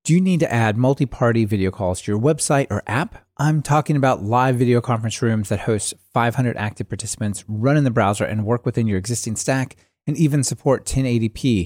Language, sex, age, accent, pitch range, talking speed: English, male, 30-49, American, 105-135 Hz, 200 wpm